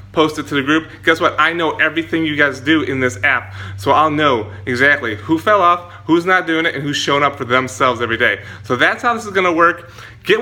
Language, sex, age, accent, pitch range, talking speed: English, male, 30-49, American, 120-160 Hz, 255 wpm